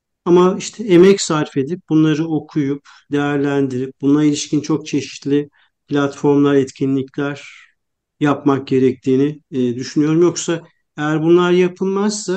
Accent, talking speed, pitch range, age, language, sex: native, 100 wpm, 130-155 Hz, 50-69, Turkish, male